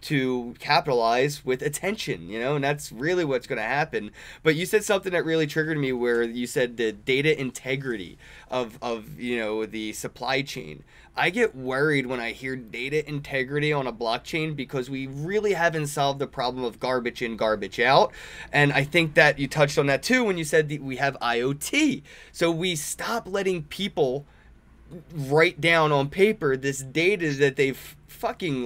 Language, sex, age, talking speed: English, male, 20-39, 180 wpm